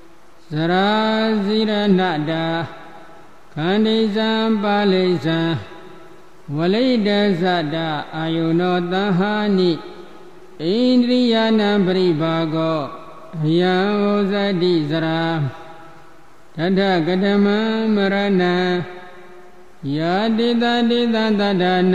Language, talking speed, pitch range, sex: Vietnamese, 45 wpm, 165-205 Hz, male